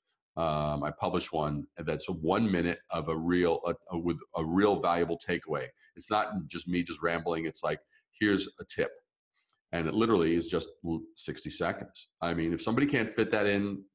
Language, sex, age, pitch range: English, male, 40-59, 85-110 Hz